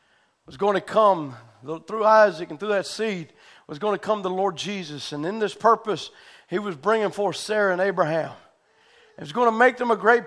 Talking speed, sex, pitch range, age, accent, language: 210 wpm, male, 165-225 Hz, 50-69, American, English